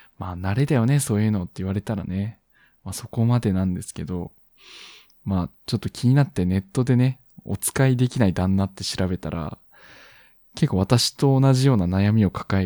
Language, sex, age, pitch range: Japanese, male, 20-39, 95-130 Hz